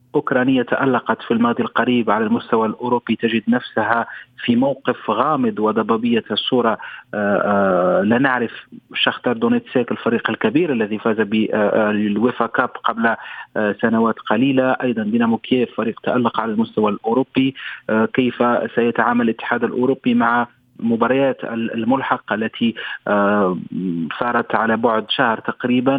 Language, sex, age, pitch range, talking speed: Arabic, male, 40-59, 110-130 Hz, 115 wpm